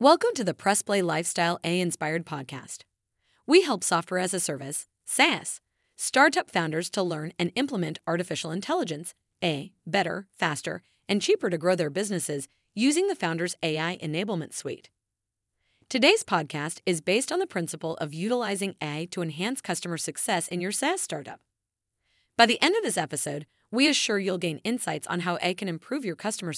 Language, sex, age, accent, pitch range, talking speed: English, female, 30-49, American, 160-235 Hz, 170 wpm